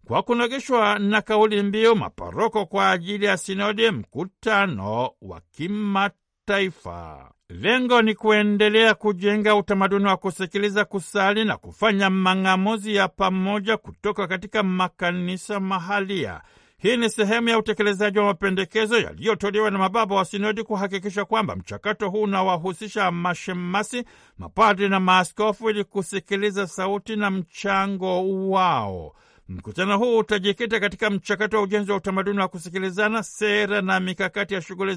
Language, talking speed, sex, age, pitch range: Swahili, 125 wpm, male, 60-79, 190-215 Hz